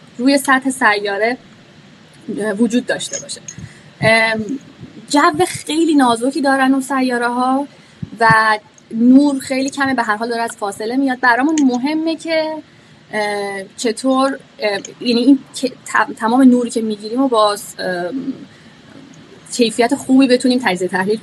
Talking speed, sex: 115 wpm, female